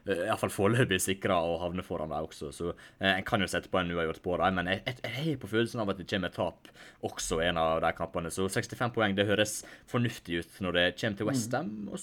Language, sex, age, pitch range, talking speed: English, male, 20-39, 90-110 Hz, 245 wpm